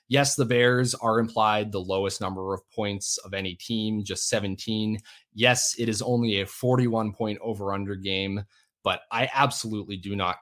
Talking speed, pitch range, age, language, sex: 175 wpm, 100-120 Hz, 20-39, English, male